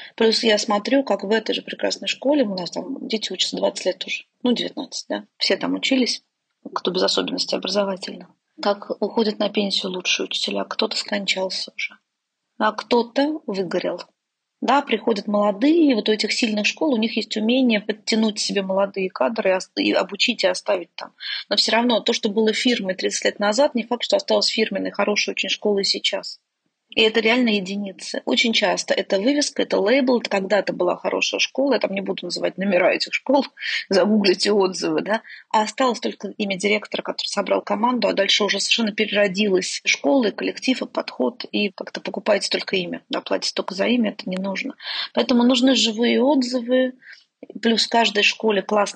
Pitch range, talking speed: 200-245 Hz, 180 wpm